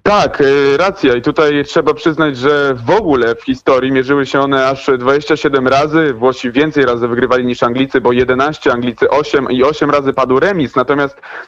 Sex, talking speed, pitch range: male, 175 wpm, 130-160 Hz